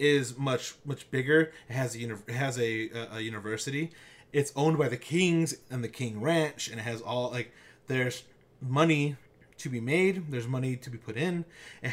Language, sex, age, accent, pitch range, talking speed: English, male, 30-49, American, 120-160 Hz, 195 wpm